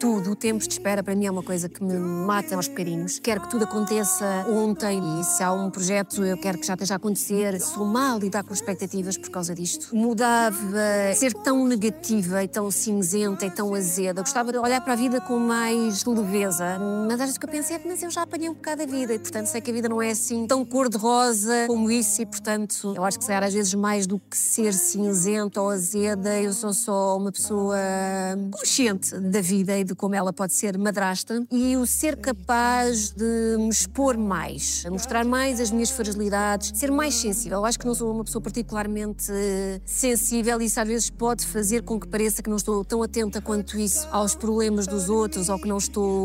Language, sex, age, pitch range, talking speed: Portuguese, female, 20-39, 200-235 Hz, 215 wpm